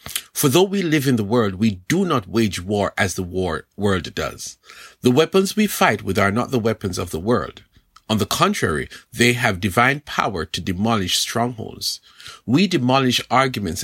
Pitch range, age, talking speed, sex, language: 100-140 Hz, 50-69, 180 wpm, male, English